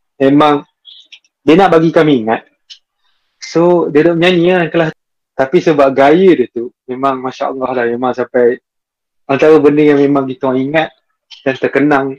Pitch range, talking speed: 130-155 Hz, 150 wpm